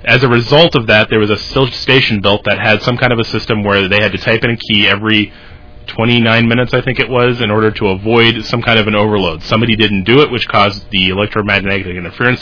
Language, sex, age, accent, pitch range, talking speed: English, male, 30-49, American, 100-125 Hz, 240 wpm